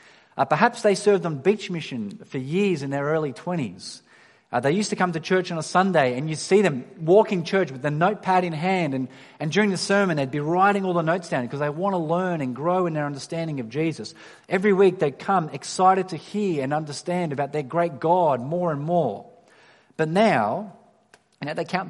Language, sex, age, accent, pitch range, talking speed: English, male, 30-49, Australian, 135-185 Hz, 215 wpm